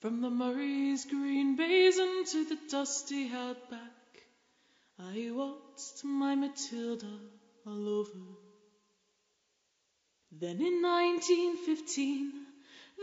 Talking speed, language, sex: 85 wpm, English, female